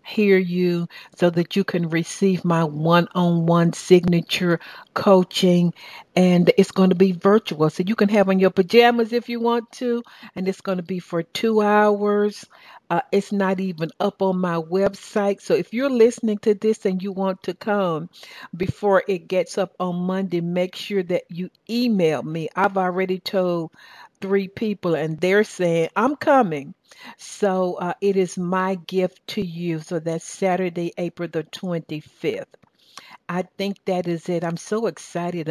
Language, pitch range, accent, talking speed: English, 170-195 Hz, American, 165 wpm